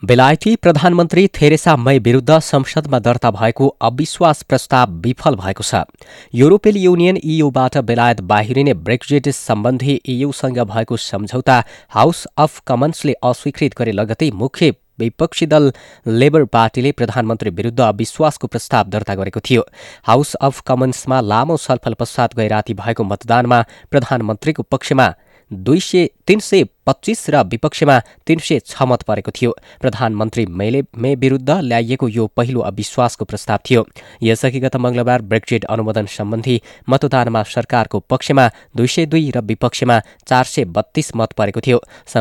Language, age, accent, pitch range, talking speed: English, 20-39, Indian, 115-140 Hz, 120 wpm